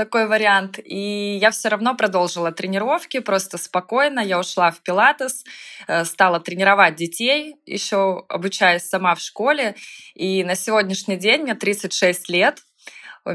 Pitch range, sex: 180-220 Hz, female